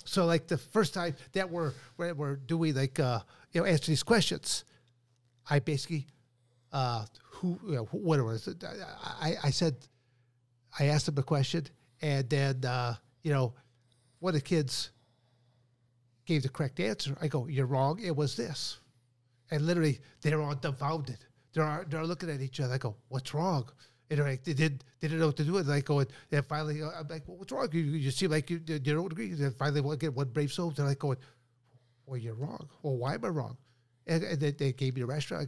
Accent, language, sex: American, English, male